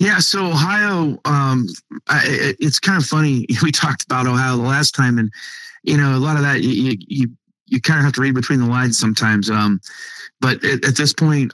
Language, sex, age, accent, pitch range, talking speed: English, male, 30-49, American, 105-130 Hz, 210 wpm